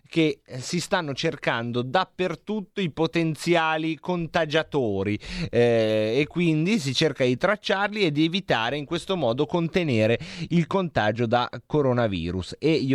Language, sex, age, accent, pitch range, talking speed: Italian, male, 30-49, native, 110-150 Hz, 130 wpm